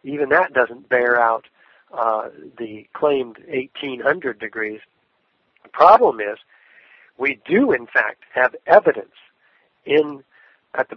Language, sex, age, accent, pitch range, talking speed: English, male, 60-79, American, 120-150 Hz, 120 wpm